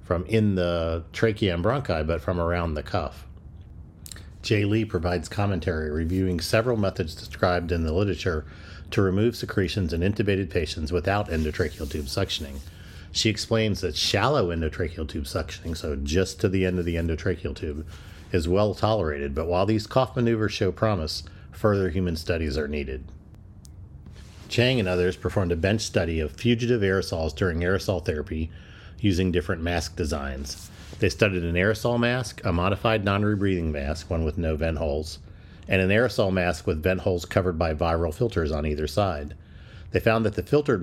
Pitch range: 80-100 Hz